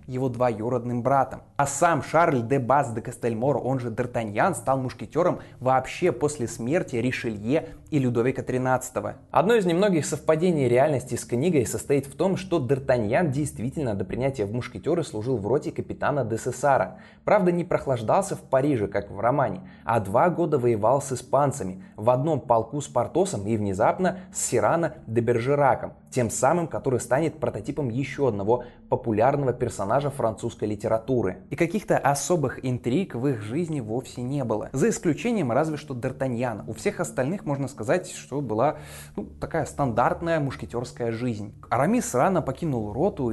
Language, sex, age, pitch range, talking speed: Russian, male, 20-39, 120-150 Hz, 155 wpm